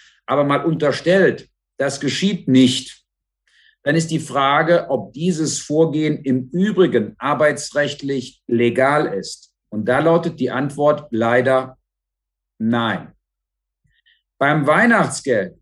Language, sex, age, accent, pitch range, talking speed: German, male, 50-69, German, 130-170 Hz, 105 wpm